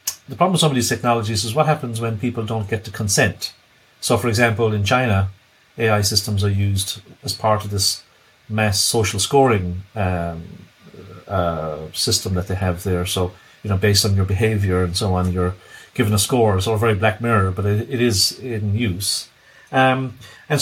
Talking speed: 190 wpm